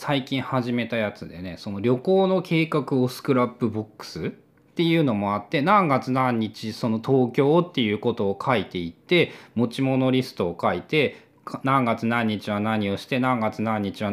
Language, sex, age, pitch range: Japanese, male, 20-39, 110-155 Hz